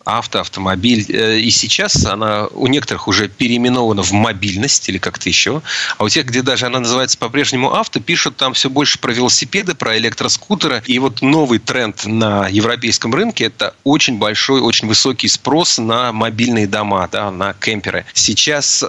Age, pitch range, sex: 30-49, 105-125 Hz, male